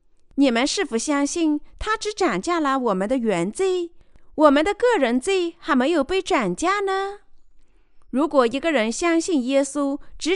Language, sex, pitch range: Chinese, female, 240-345 Hz